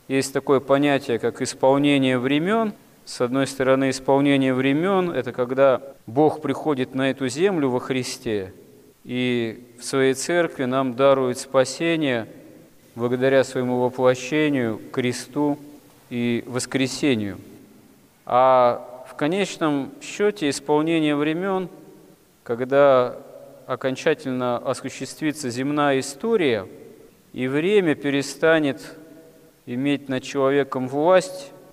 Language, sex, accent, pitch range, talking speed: Russian, male, native, 130-150 Hz, 95 wpm